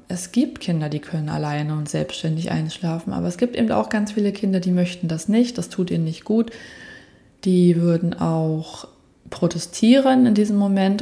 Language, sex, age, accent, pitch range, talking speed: German, female, 20-39, German, 170-195 Hz, 180 wpm